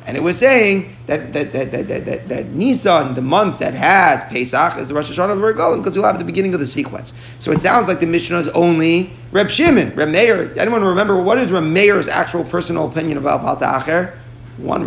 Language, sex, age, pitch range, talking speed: English, male, 30-49, 170-210 Hz, 225 wpm